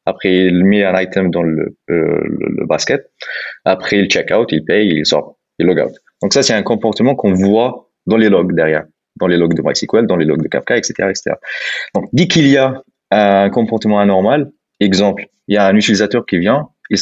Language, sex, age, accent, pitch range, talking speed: French, male, 20-39, French, 95-110 Hz, 215 wpm